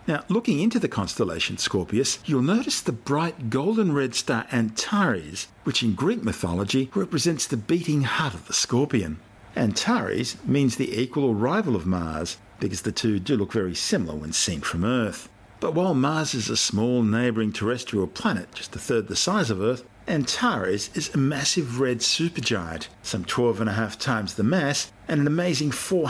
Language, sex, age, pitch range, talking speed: English, male, 50-69, 100-145 Hz, 175 wpm